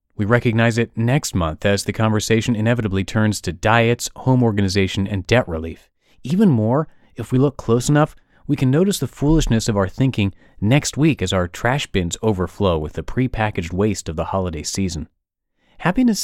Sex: male